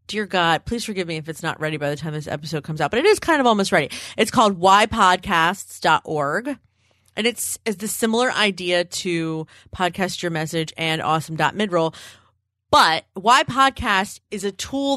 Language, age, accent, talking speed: English, 30-49, American, 175 wpm